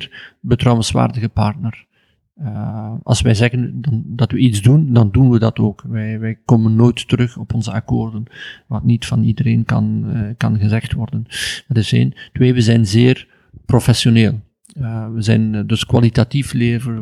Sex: male